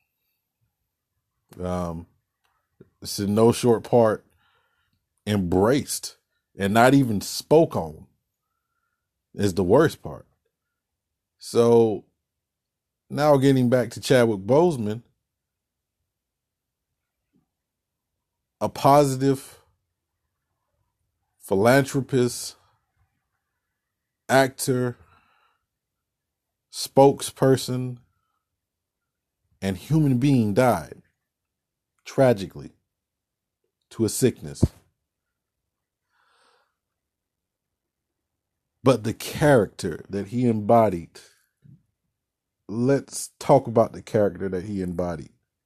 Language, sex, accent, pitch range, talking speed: English, male, American, 100-135 Hz, 65 wpm